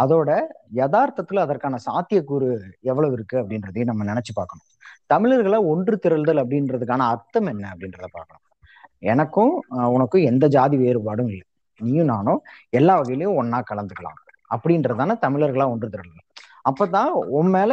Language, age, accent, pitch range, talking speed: Tamil, 20-39, native, 115-160 Hz, 125 wpm